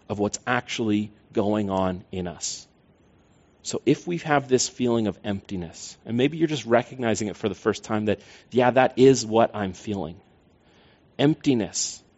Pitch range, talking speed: 105-125 Hz, 165 wpm